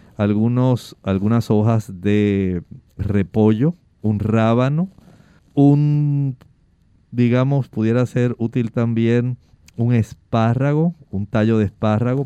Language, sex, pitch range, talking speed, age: Spanish, male, 105-130 Hz, 90 wpm, 50-69